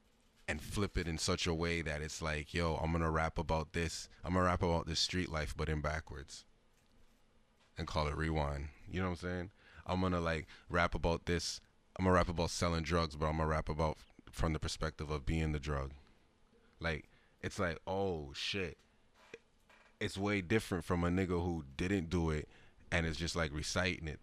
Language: English